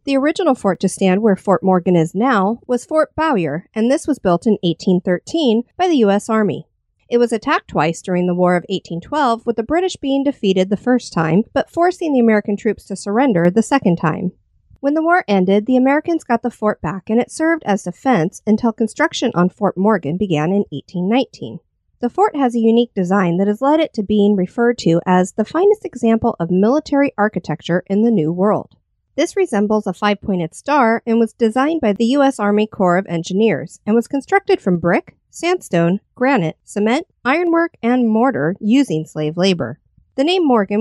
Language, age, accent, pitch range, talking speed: English, 50-69, American, 185-260 Hz, 190 wpm